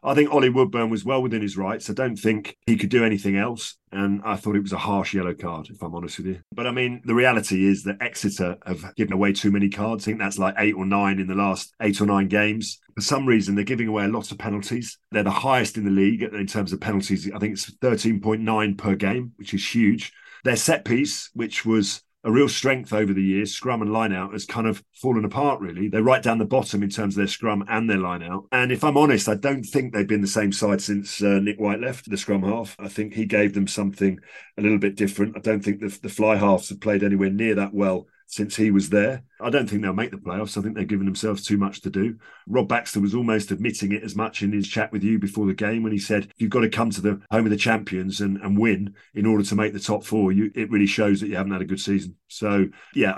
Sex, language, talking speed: male, English, 265 wpm